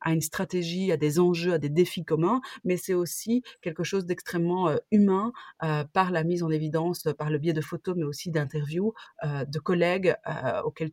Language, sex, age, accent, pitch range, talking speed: French, female, 30-49, French, 155-195 Hz, 200 wpm